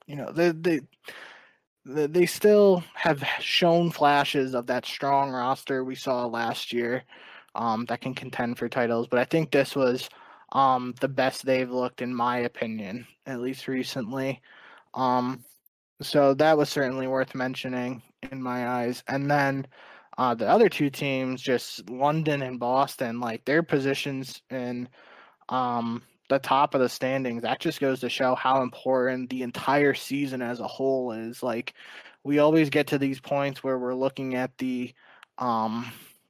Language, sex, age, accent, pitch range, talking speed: English, male, 20-39, American, 125-140 Hz, 160 wpm